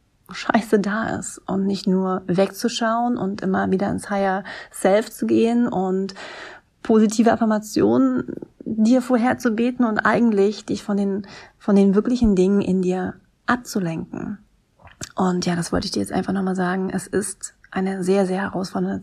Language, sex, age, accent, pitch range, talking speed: German, female, 30-49, German, 190-220 Hz, 150 wpm